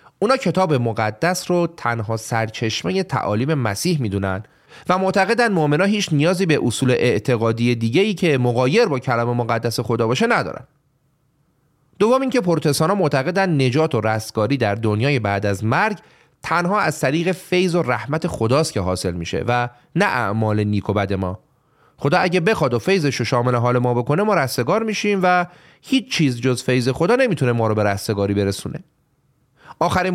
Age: 30-49